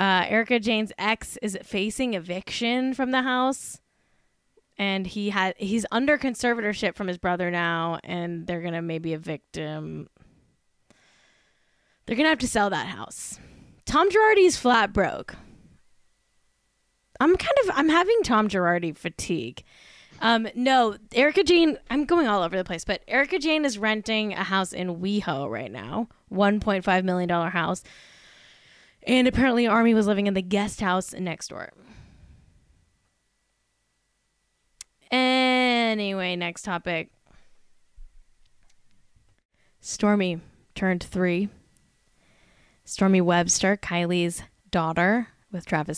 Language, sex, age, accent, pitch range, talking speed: English, female, 10-29, American, 180-250 Hz, 125 wpm